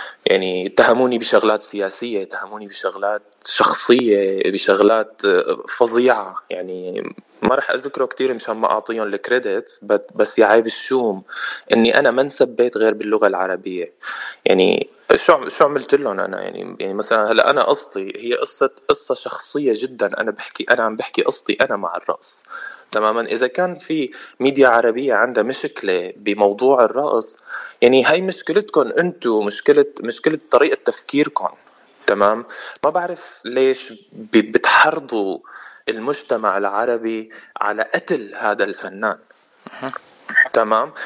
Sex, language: male, Arabic